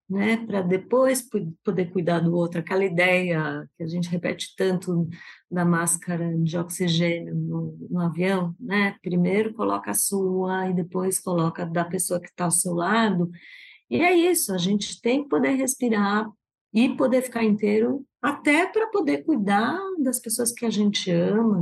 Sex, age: female, 30-49